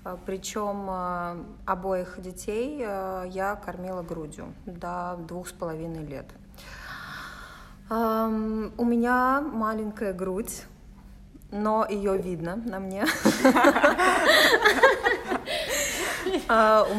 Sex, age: female, 20-39